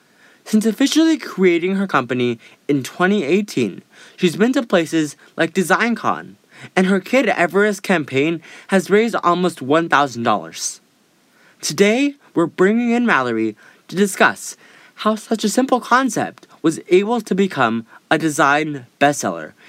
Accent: American